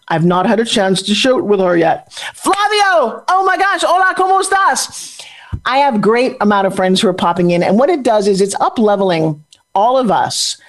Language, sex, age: English, male, 40-59